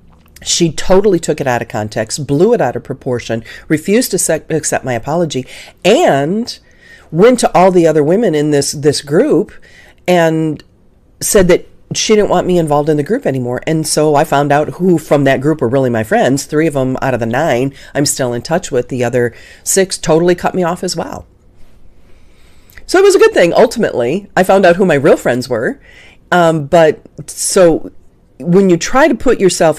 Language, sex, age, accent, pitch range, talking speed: English, female, 40-59, American, 130-185 Hz, 195 wpm